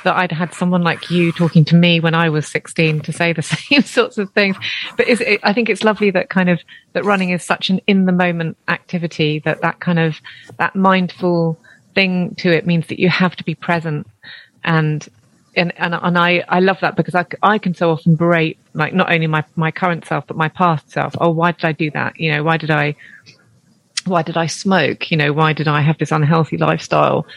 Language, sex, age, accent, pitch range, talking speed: English, female, 30-49, British, 160-195 Hz, 230 wpm